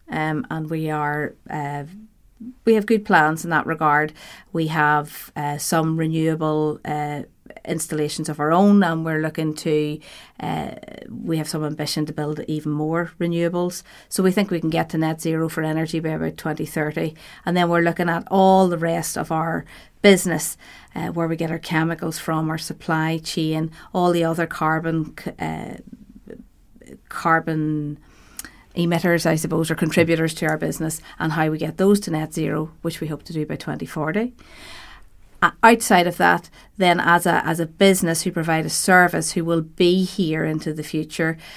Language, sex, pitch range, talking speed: English, female, 155-170 Hz, 175 wpm